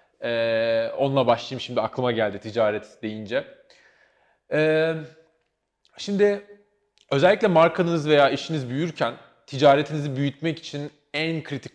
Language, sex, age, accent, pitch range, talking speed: Turkish, male, 30-49, native, 130-160 Hz, 100 wpm